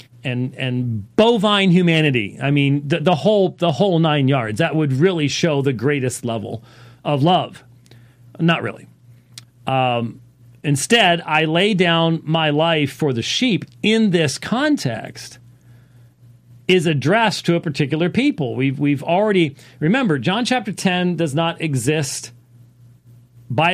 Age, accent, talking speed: 40-59, American, 135 wpm